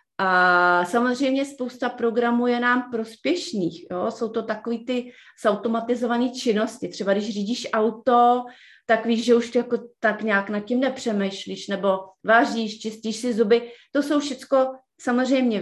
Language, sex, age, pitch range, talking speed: Czech, female, 30-49, 205-255 Hz, 140 wpm